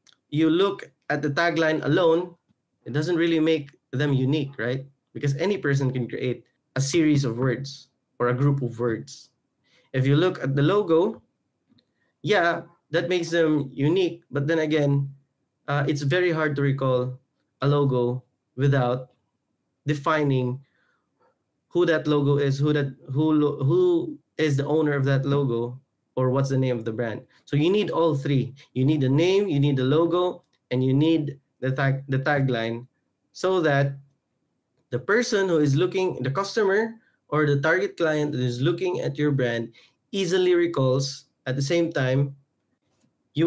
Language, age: Filipino, 20-39